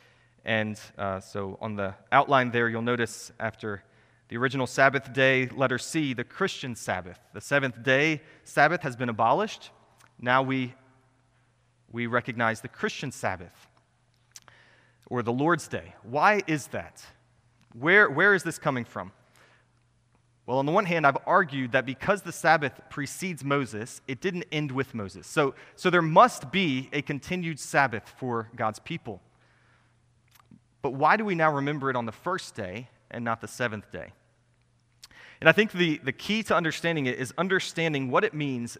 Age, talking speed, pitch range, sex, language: 30-49, 160 wpm, 120-155 Hz, male, English